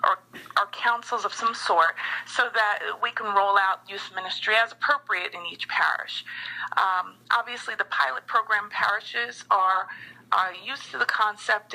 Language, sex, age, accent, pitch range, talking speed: English, female, 40-59, American, 180-230 Hz, 160 wpm